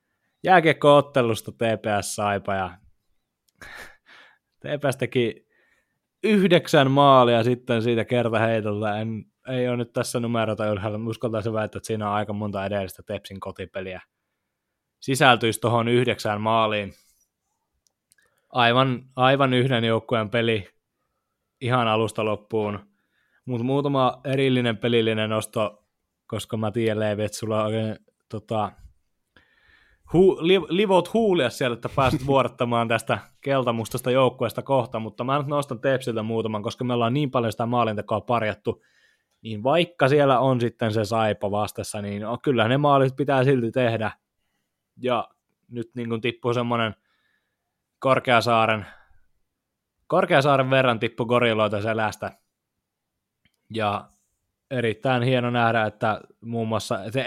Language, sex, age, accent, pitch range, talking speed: Finnish, male, 20-39, native, 110-130 Hz, 120 wpm